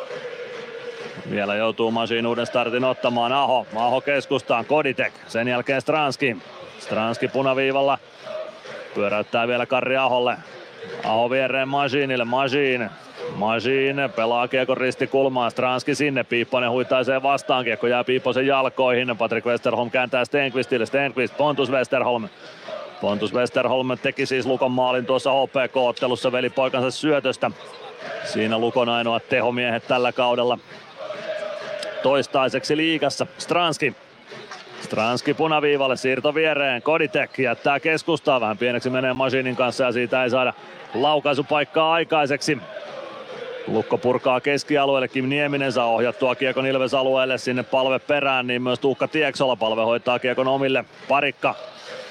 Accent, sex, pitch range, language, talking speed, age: native, male, 125-145 Hz, Finnish, 115 wpm, 30-49